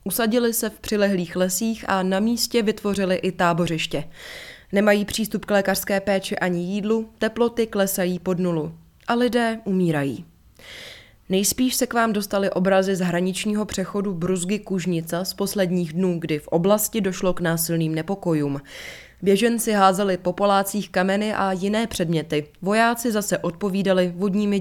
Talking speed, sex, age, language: 140 wpm, female, 20-39, Czech